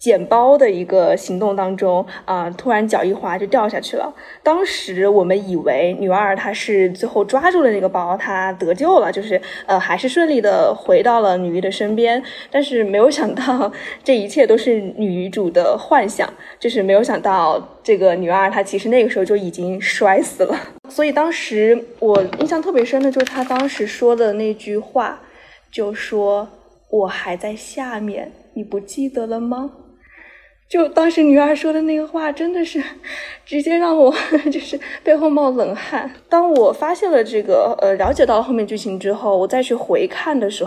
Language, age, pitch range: Chinese, 20-39, 195-275 Hz